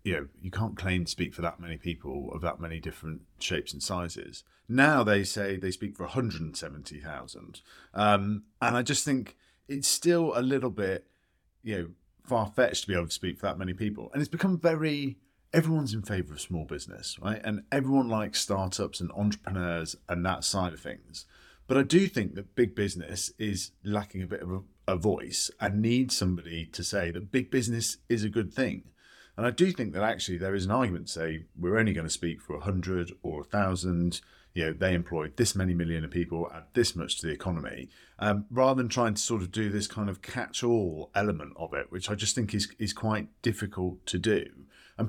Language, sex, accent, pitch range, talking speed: English, male, British, 90-110 Hz, 210 wpm